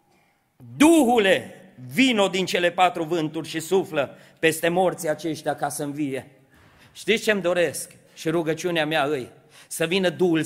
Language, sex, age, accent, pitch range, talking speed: Romanian, male, 40-59, native, 170-285 Hz, 140 wpm